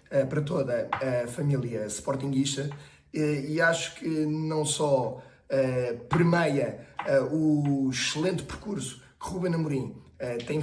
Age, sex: 20-39, male